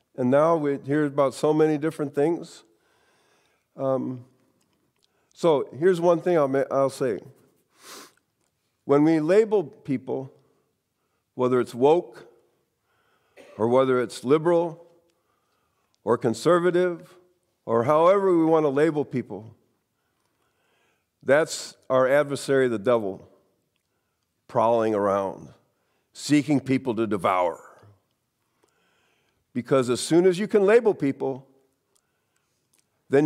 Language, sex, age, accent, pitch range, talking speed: English, male, 50-69, American, 130-170 Hz, 105 wpm